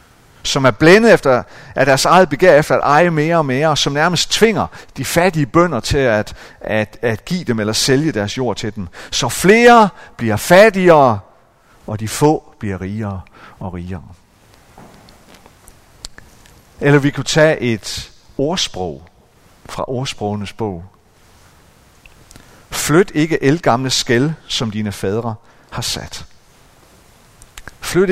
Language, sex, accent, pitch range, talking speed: Danish, male, native, 105-145 Hz, 130 wpm